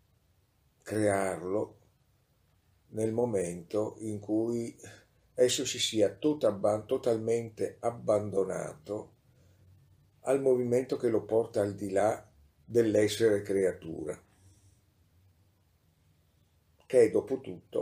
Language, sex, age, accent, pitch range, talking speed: Italian, male, 50-69, native, 95-125 Hz, 75 wpm